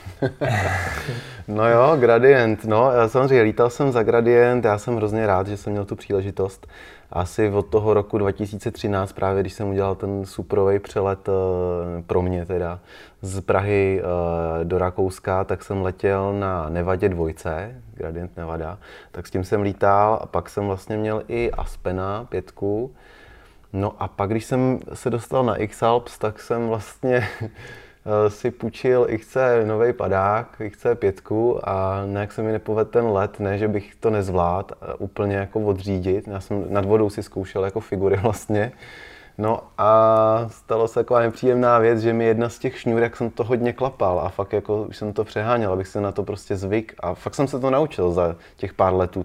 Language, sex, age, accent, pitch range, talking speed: Czech, male, 20-39, native, 95-115 Hz, 175 wpm